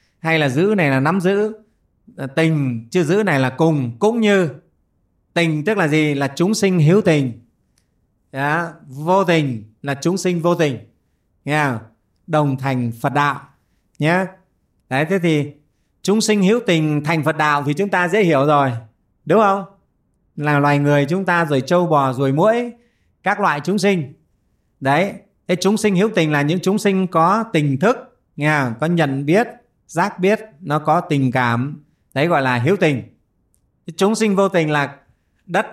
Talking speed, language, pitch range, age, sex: 165 wpm, Vietnamese, 135-180 Hz, 20-39, male